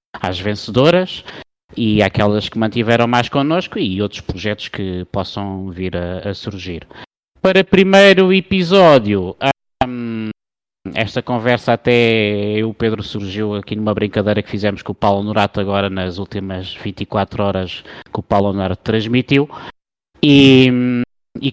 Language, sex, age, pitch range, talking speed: Portuguese, male, 20-39, 105-140 Hz, 135 wpm